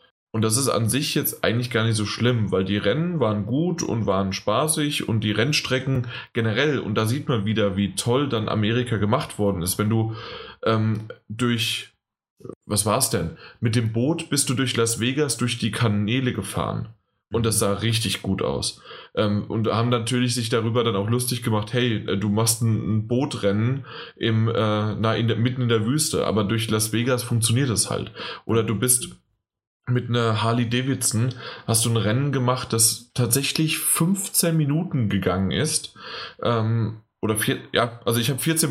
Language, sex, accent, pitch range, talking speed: German, male, German, 110-130 Hz, 185 wpm